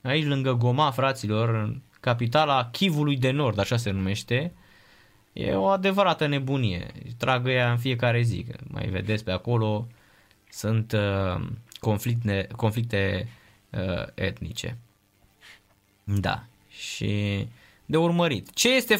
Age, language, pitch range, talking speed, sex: 20-39, Romanian, 110-160 Hz, 115 wpm, male